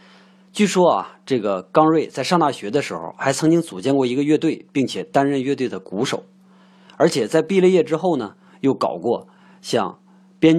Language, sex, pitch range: Chinese, male, 140-190 Hz